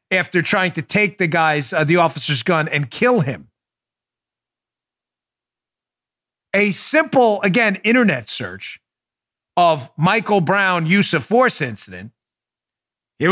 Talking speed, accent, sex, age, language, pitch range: 115 wpm, American, male, 40-59, English, 155-230 Hz